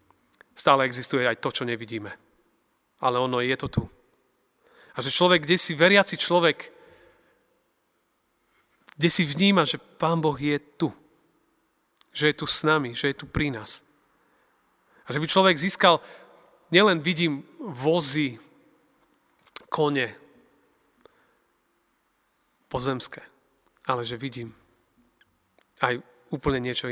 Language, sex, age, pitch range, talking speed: Slovak, male, 30-49, 120-150 Hz, 115 wpm